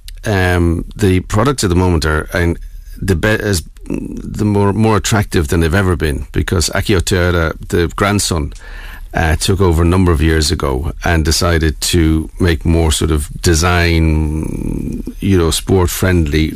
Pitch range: 80-95 Hz